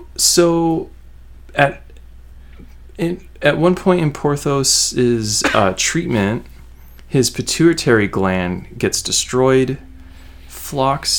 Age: 30-49